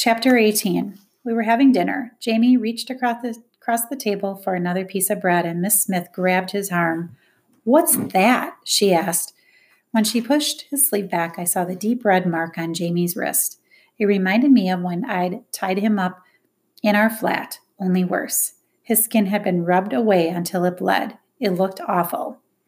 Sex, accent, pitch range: female, American, 185-245 Hz